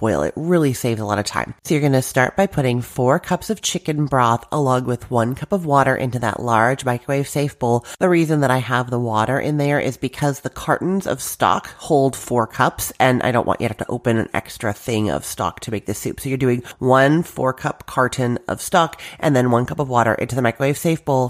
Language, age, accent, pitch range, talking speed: English, 30-49, American, 125-155 Hz, 245 wpm